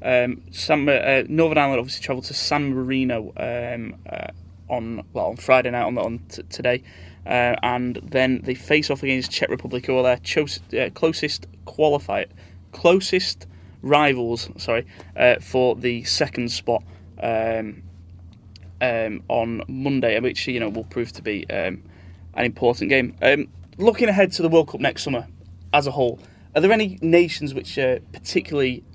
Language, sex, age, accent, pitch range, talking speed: English, male, 20-39, British, 90-140 Hz, 165 wpm